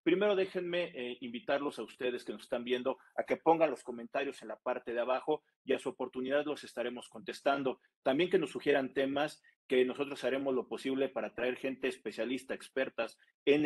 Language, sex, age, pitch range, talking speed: Spanish, male, 40-59, 125-145 Hz, 190 wpm